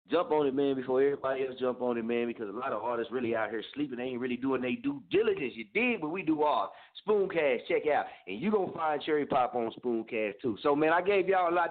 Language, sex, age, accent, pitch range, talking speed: English, male, 30-49, American, 120-160 Hz, 270 wpm